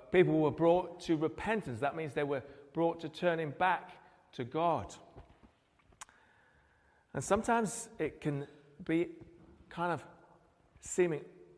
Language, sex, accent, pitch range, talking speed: English, male, British, 135-170 Hz, 120 wpm